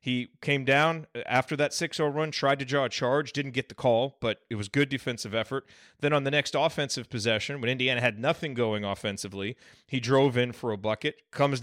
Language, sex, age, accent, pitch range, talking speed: English, male, 30-49, American, 120-150 Hz, 210 wpm